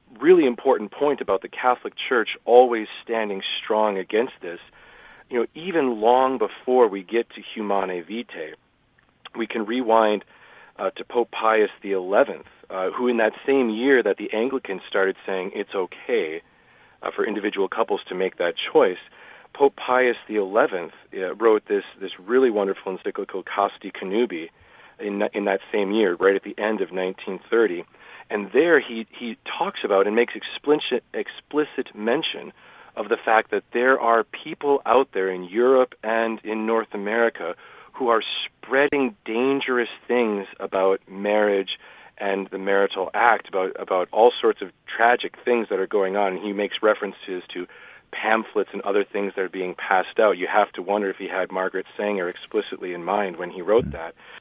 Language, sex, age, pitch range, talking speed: English, male, 40-59, 100-135 Hz, 170 wpm